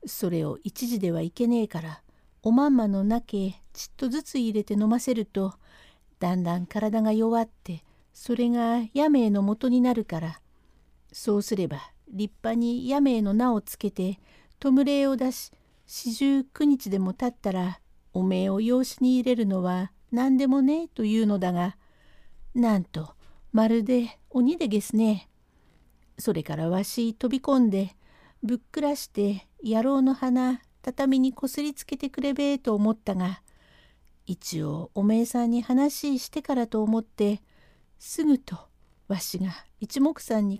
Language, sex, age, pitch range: Japanese, female, 60-79, 190-260 Hz